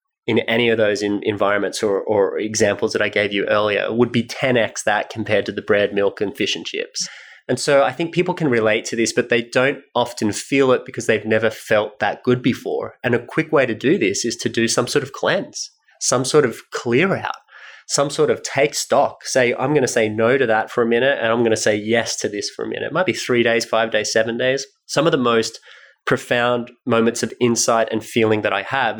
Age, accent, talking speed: 20-39, Australian, 240 wpm